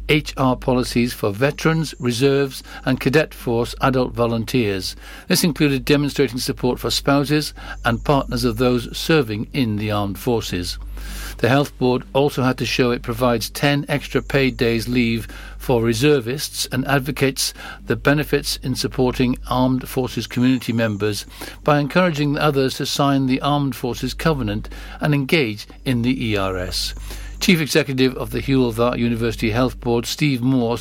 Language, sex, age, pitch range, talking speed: English, male, 60-79, 115-145 Hz, 145 wpm